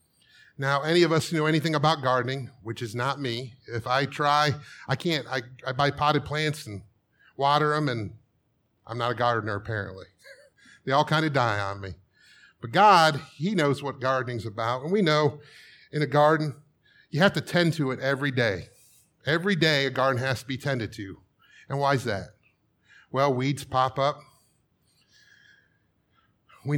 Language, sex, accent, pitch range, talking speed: English, male, American, 120-150 Hz, 175 wpm